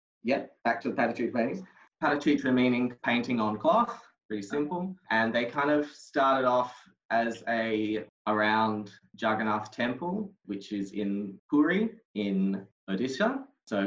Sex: male